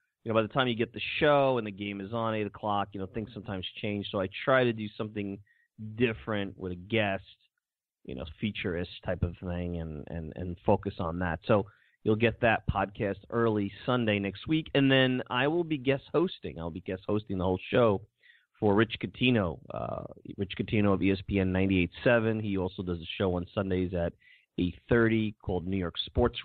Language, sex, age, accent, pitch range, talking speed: English, male, 30-49, American, 90-110 Hz, 205 wpm